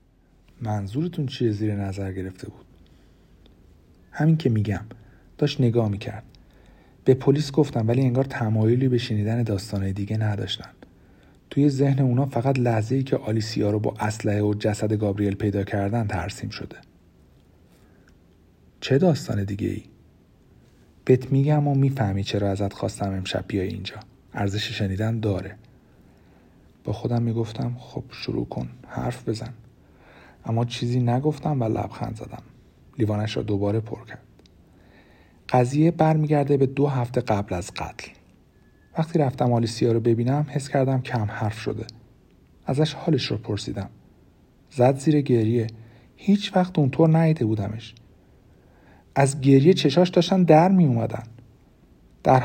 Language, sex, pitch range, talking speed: Persian, male, 100-135 Hz, 130 wpm